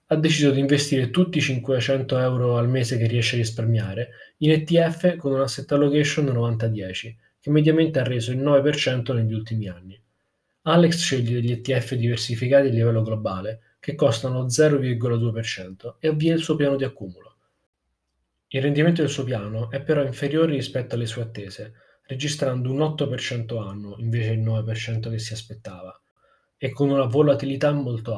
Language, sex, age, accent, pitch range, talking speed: Italian, male, 20-39, native, 115-135 Hz, 160 wpm